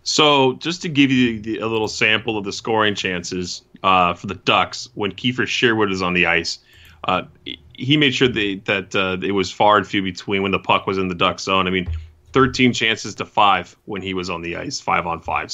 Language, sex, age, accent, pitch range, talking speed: English, male, 30-49, American, 95-120 Hz, 225 wpm